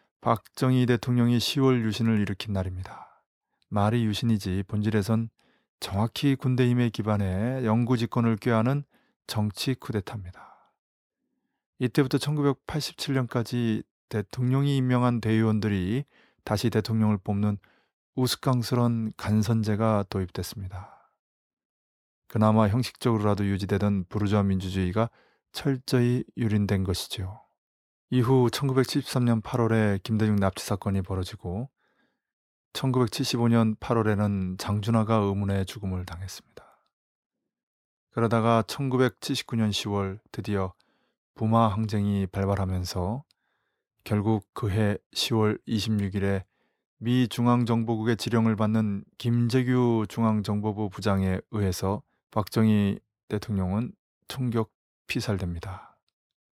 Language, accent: Korean, native